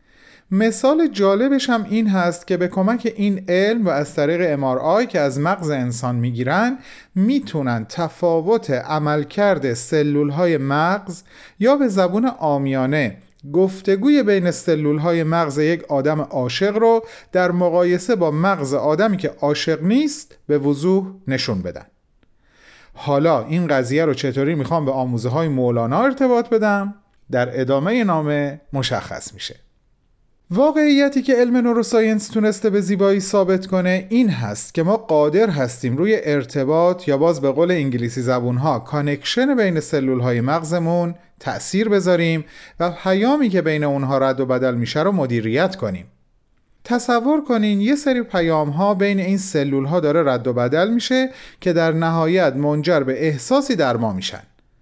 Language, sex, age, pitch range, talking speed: Persian, male, 40-59, 140-205 Hz, 140 wpm